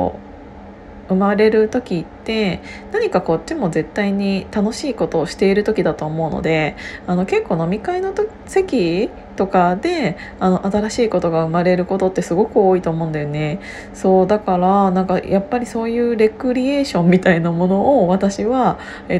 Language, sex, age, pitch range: Japanese, female, 20-39, 175-210 Hz